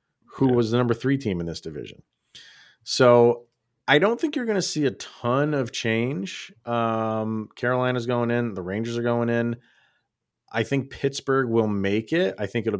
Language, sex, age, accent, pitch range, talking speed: English, male, 30-49, American, 95-120 Hz, 185 wpm